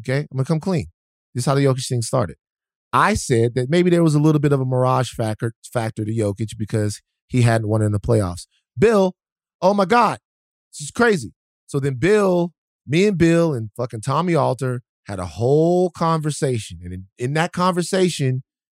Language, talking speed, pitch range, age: English, 195 wpm, 120-175 Hz, 30-49